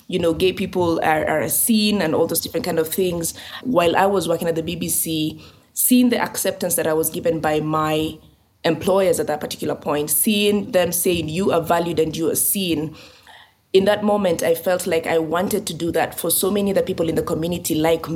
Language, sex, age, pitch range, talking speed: English, female, 20-39, 160-185 Hz, 215 wpm